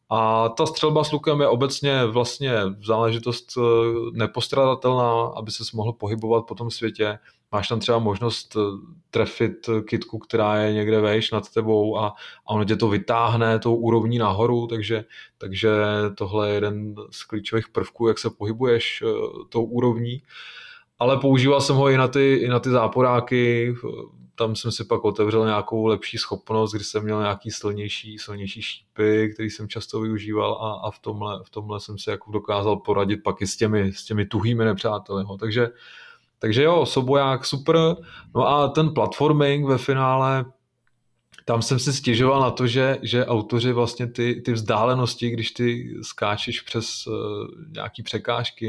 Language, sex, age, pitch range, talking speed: Czech, male, 20-39, 110-125 Hz, 160 wpm